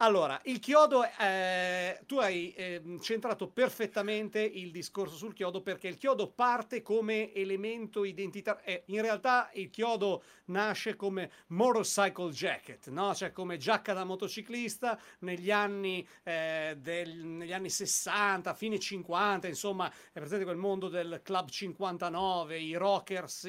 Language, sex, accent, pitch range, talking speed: Italian, male, native, 165-210 Hz, 125 wpm